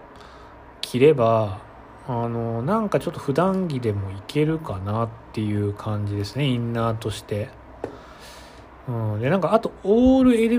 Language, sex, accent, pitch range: Japanese, male, native, 105-155 Hz